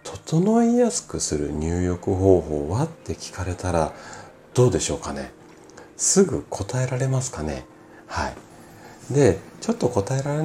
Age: 40-59